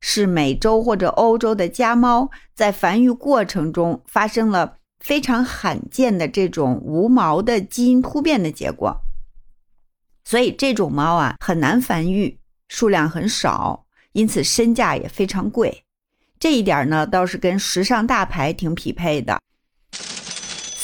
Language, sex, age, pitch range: Chinese, female, 50-69, 160-235 Hz